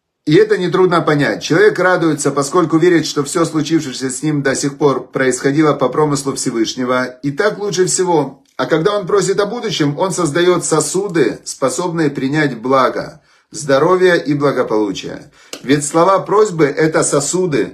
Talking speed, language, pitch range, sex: 150 wpm, Russian, 125-165 Hz, male